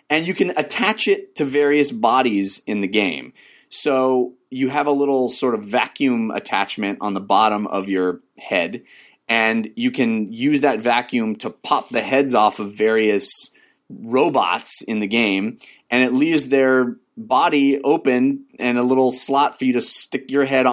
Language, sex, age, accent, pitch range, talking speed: English, male, 30-49, American, 110-145 Hz, 170 wpm